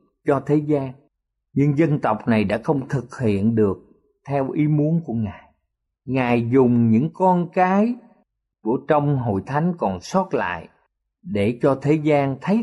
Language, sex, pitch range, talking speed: Vietnamese, male, 135-210 Hz, 160 wpm